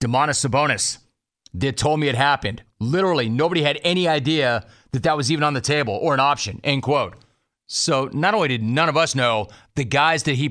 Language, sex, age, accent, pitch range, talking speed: English, male, 40-59, American, 125-155 Hz, 205 wpm